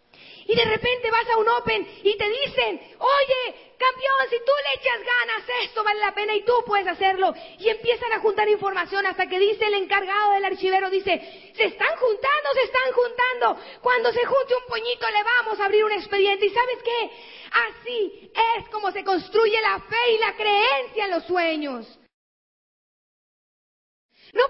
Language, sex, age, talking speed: English, female, 40-59, 175 wpm